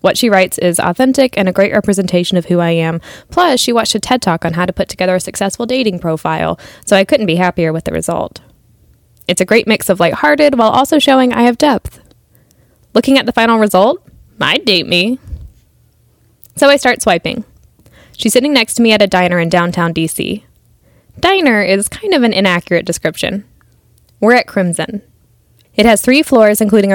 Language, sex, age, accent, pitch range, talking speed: English, female, 10-29, American, 175-240 Hz, 190 wpm